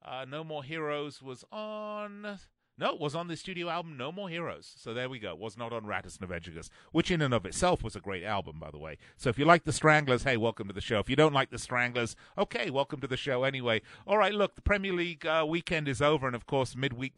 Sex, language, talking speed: male, English, 260 wpm